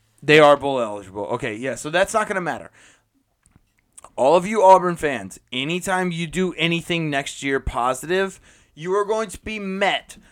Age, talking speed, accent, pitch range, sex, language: 20-39, 175 wpm, American, 140-195 Hz, male, English